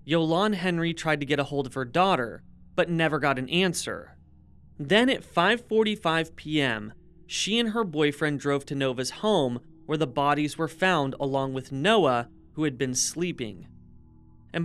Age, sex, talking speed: 30-49, male, 170 wpm